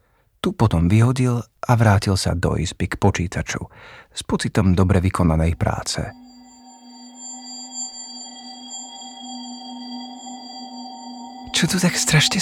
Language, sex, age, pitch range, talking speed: Slovak, male, 40-59, 90-145 Hz, 90 wpm